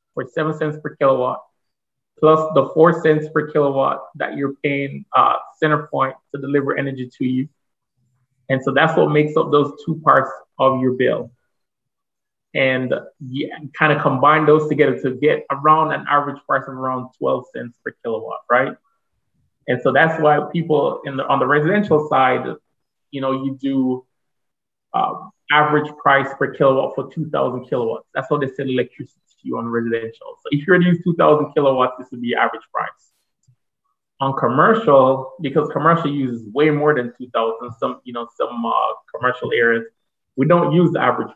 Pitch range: 130-155 Hz